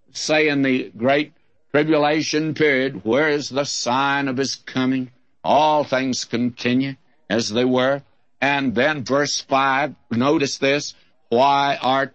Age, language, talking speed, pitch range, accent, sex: 60-79, English, 135 wpm, 130-155 Hz, American, male